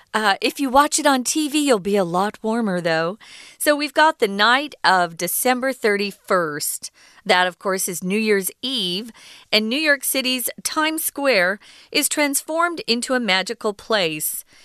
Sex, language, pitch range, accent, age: female, Chinese, 190-275 Hz, American, 40-59